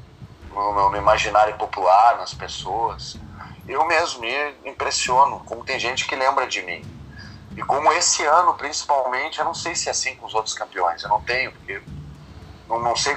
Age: 40-59